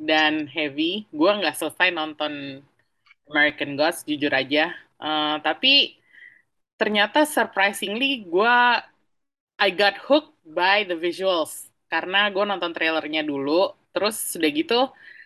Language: Indonesian